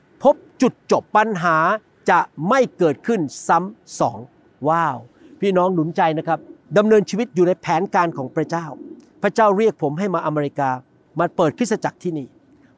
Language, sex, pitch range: Thai, male, 155-200 Hz